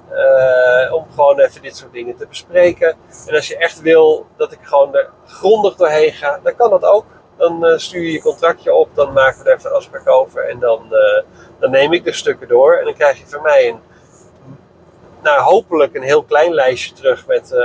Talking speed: 205 wpm